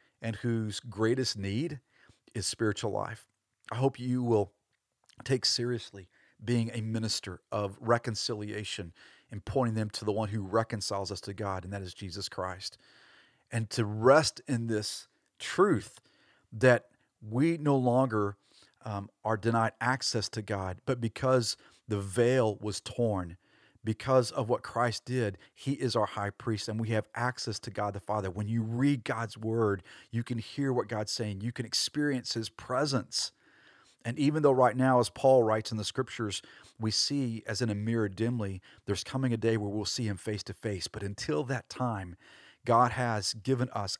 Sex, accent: male, American